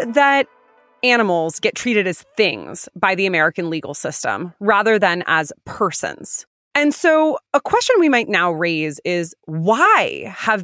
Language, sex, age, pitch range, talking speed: English, female, 30-49, 175-255 Hz, 145 wpm